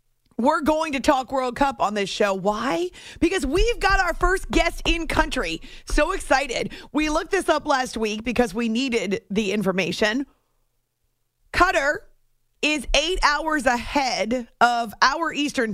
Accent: American